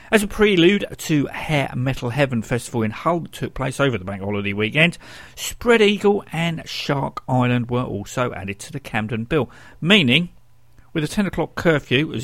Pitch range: 115-170 Hz